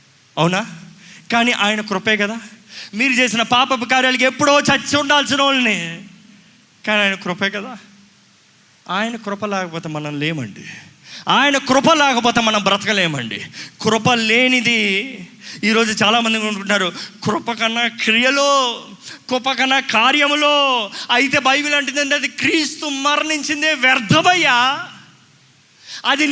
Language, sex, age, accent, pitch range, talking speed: Telugu, male, 20-39, native, 185-260 Hz, 100 wpm